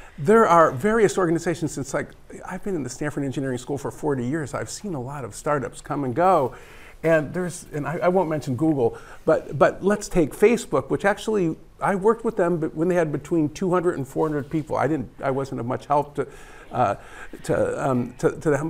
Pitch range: 150-185 Hz